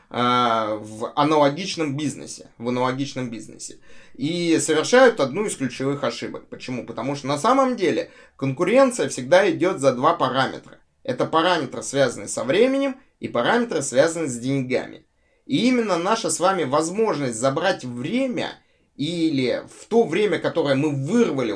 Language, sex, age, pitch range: Russian, male, 20-39, 130-205 Hz